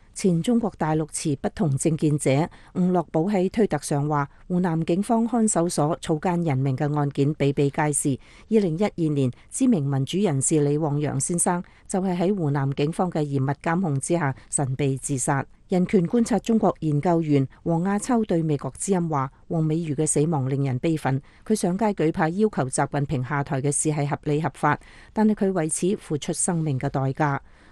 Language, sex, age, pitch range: English, female, 40-59, 145-180 Hz